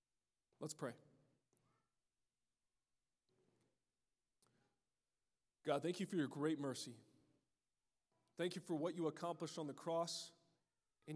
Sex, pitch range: male, 140-165 Hz